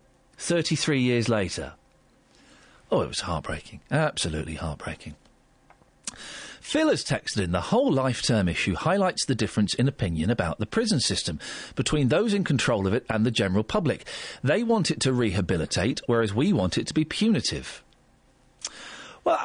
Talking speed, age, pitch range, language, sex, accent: 150 wpm, 40-59, 115-180 Hz, English, male, British